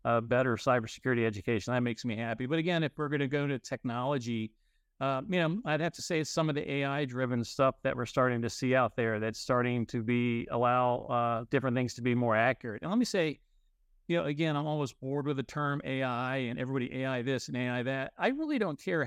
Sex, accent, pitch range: male, American, 125-155 Hz